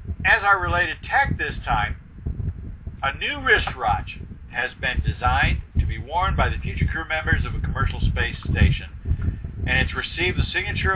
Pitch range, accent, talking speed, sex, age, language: 80-100 Hz, American, 165 wpm, male, 50-69, English